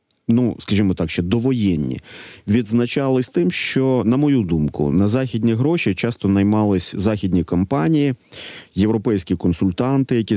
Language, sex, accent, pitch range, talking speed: Ukrainian, male, native, 100-130 Hz, 120 wpm